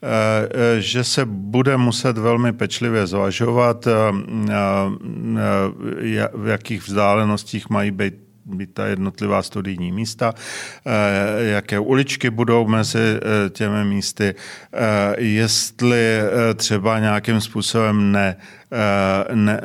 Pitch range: 105-120 Hz